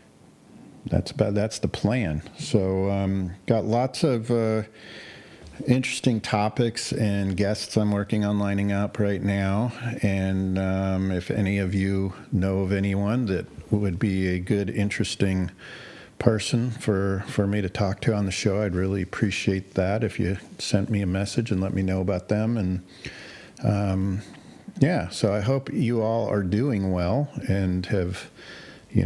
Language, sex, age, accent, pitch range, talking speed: English, male, 50-69, American, 95-110 Hz, 160 wpm